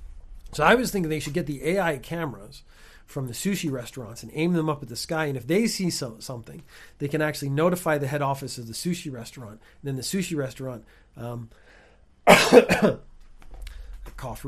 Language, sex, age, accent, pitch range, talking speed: English, male, 40-59, American, 110-155 Hz, 180 wpm